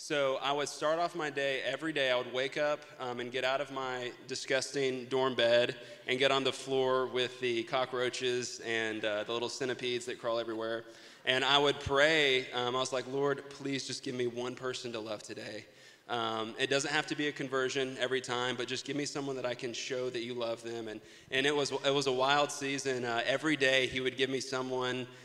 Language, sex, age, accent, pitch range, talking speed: English, male, 30-49, American, 120-135 Hz, 230 wpm